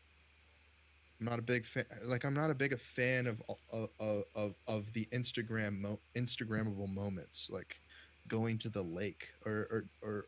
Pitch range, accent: 85-115 Hz, American